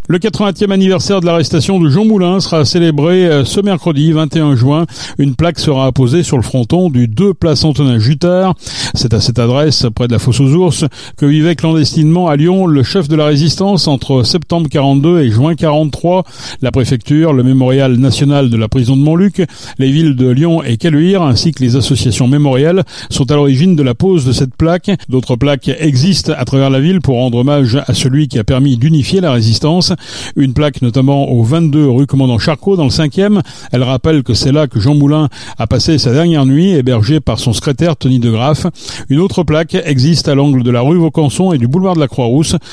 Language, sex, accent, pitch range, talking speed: French, male, French, 125-160 Hz, 205 wpm